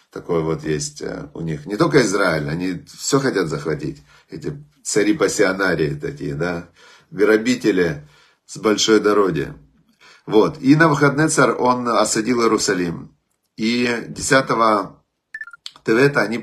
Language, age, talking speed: Russian, 40-59, 115 wpm